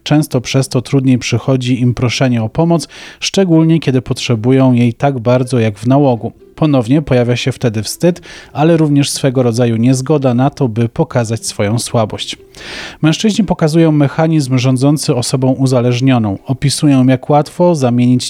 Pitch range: 125-150 Hz